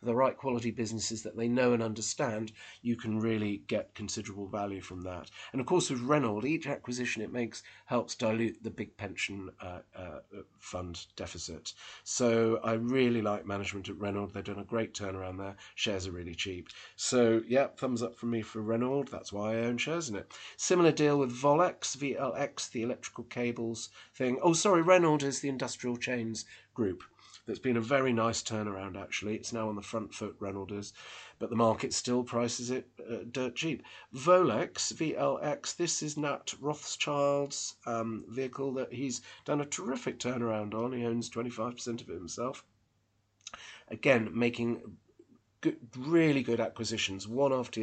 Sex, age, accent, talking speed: male, 30-49, British, 170 wpm